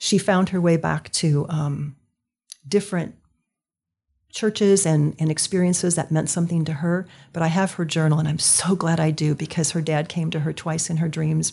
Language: English